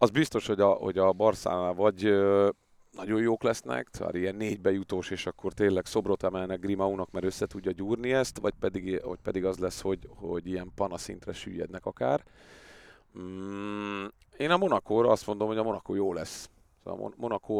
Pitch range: 95-110 Hz